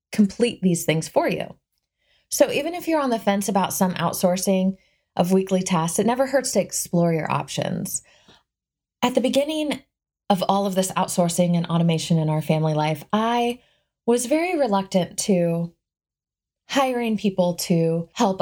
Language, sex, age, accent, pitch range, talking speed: English, female, 20-39, American, 170-245 Hz, 155 wpm